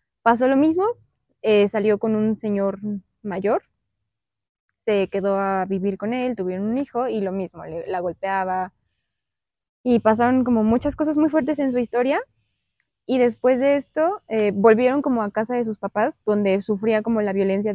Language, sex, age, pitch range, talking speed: Spanish, female, 20-39, 200-240 Hz, 170 wpm